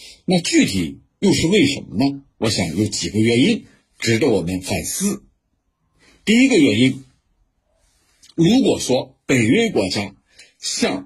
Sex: male